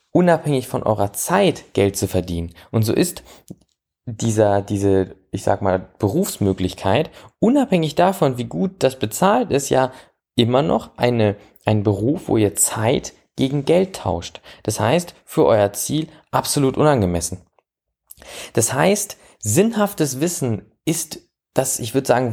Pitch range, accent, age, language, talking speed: 105-155 Hz, German, 20-39, German, 135 wpm